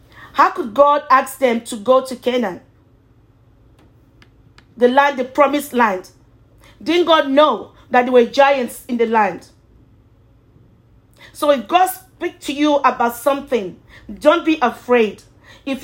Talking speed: 135 wpm